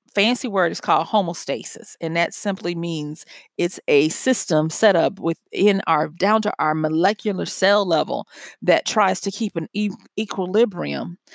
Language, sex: English, female